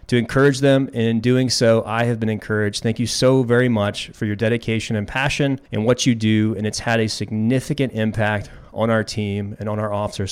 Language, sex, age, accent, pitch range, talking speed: English, male, 30-49, American, 110-130 Hz, 220 wpm